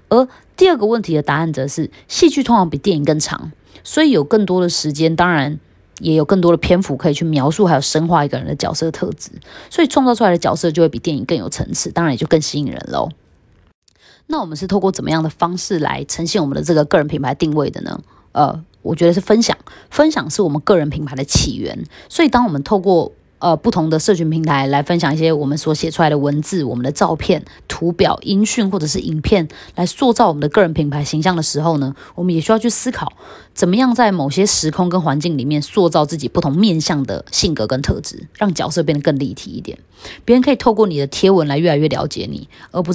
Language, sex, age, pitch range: Chinese, female, 20-39, 150-200 Hz